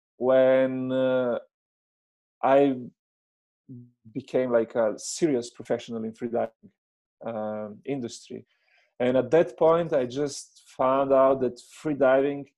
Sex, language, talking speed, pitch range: male, English, 115 wpm, 125-175 Hz